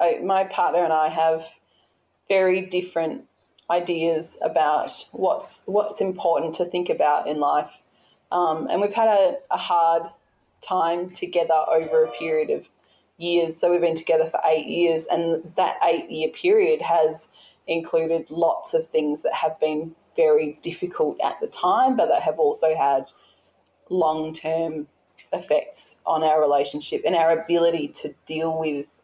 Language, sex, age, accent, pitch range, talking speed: English, female, 20-39, Australian, 155-180 Hz, 150 wpm